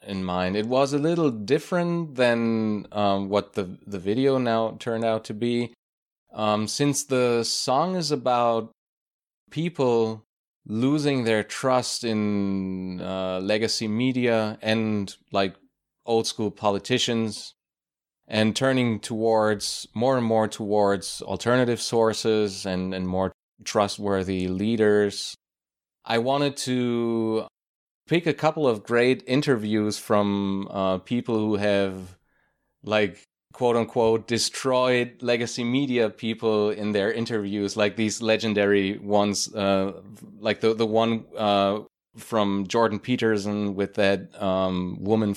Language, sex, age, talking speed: English, male, 30-49, 120 wpm